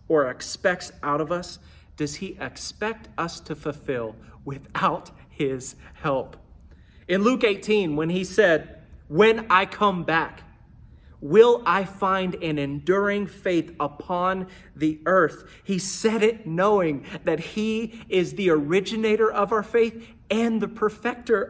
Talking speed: 135 wpm